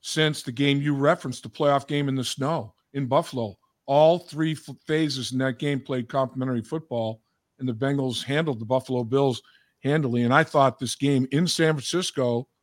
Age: 50-69